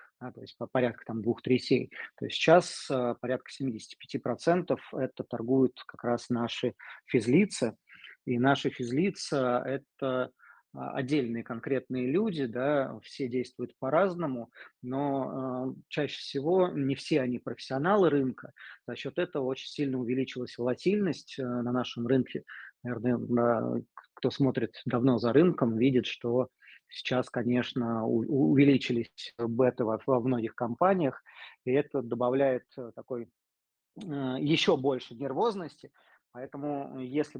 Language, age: Russian, 20-39